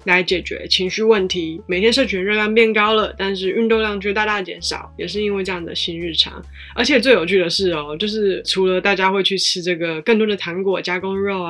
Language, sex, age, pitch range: Chinese, female, 20-39, 170-210 Hz